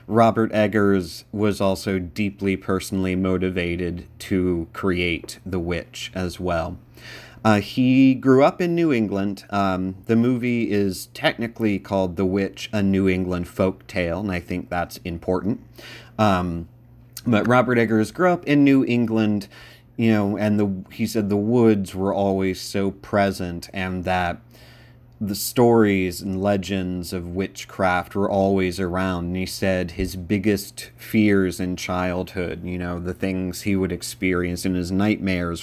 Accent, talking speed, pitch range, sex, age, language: American, 150 wpm, 95-115 Hz, male, 30-49, English